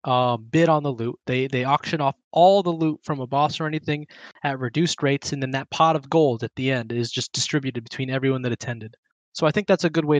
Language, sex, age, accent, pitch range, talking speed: English, male, 20-39, American, 120-160 Hz, 255 wpm